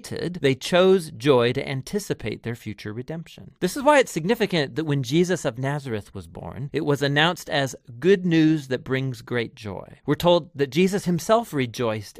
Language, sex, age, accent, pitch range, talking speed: English, male, 40-59, American, 125-175 Hz, 175 wpm